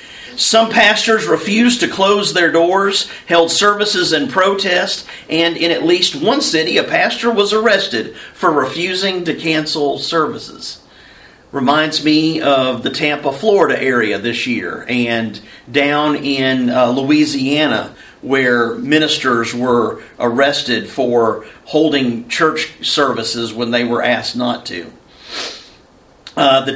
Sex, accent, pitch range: male, American, 135-175 Hz